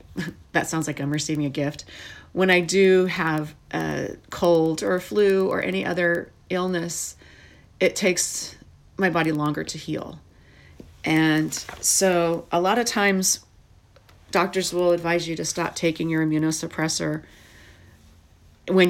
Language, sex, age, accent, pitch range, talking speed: English, female, 40-59, American, 150-175 Hz, 135 wpm